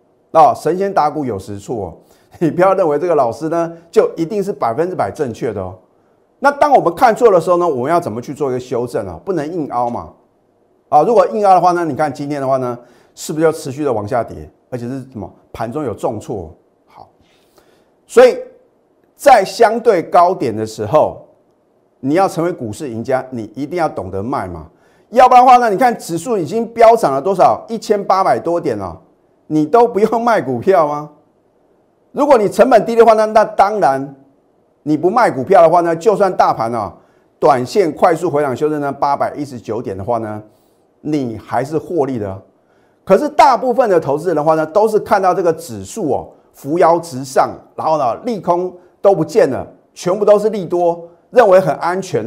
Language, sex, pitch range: Chinese, male, 135-200 Hz